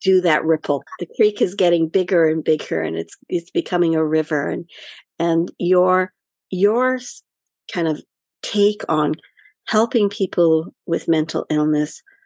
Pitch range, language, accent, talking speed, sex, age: 160-200 Hz, English, American, 140 wpm, female, 50-69